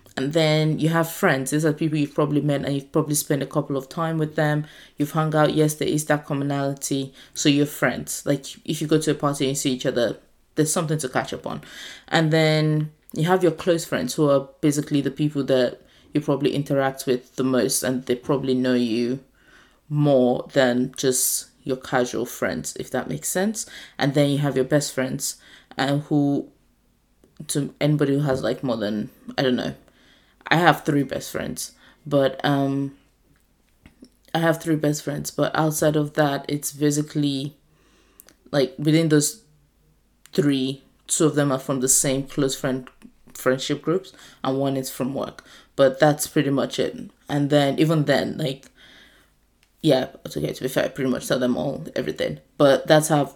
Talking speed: 190 wpm